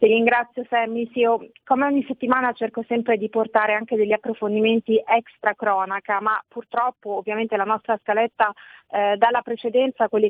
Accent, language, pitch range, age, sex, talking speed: native, Italian, 205-235 Hz, 40-59, female, 170 wpm